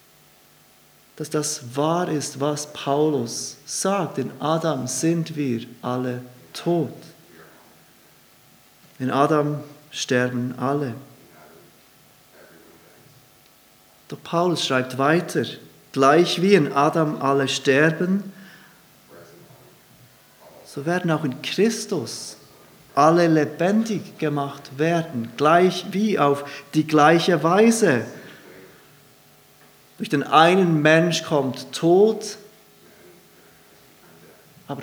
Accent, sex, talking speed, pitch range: German, male, 85 wpm, 140-175 Hz